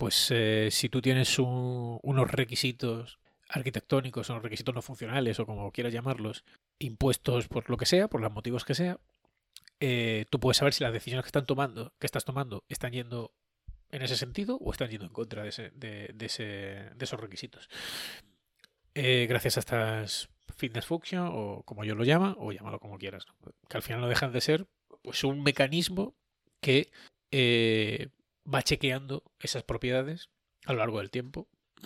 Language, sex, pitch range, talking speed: Spanish, male, 115-145 Hz, 180 wpm